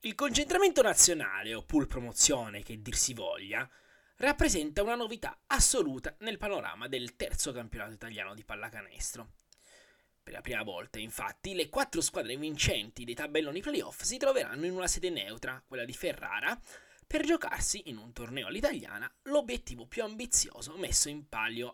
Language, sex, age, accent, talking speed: Italian, male, 20-39, native, 145 wpm